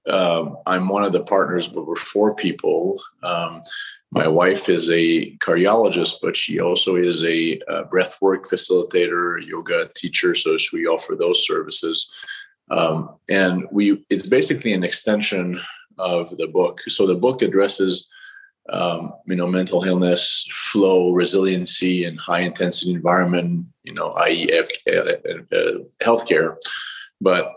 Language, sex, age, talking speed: English, male, 30-49, 135 wpm